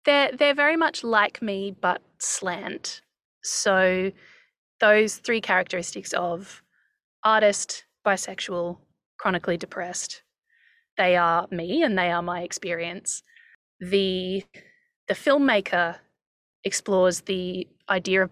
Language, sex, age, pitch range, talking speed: English, female, 20-39, 180-220 Hz, 105 wpm